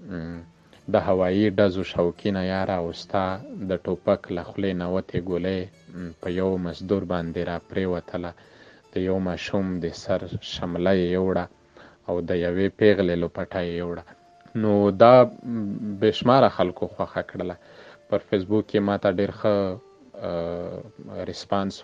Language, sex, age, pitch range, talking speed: Urdu, male, 30-49, 90-105 Hz, 60 wpm